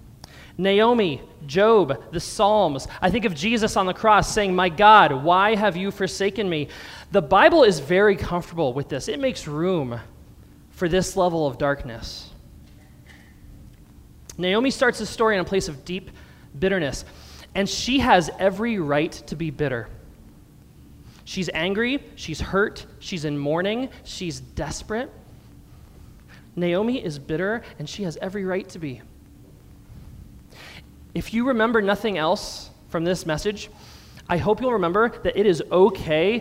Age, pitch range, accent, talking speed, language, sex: 20-39, 155-220 Hz, American, 145 wpm, English, male